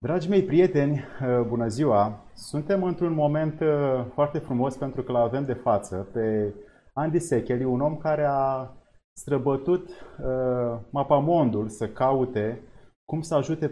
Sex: male